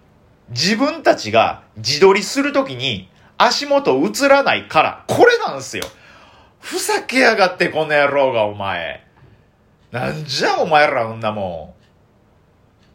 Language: Japanese